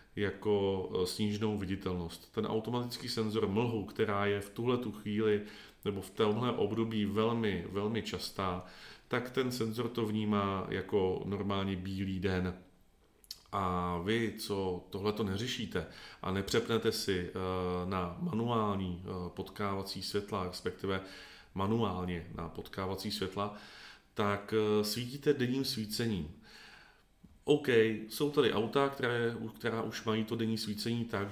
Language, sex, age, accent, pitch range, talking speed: Czech, male, 40-59, native, 95-115 Hz, 115 wpm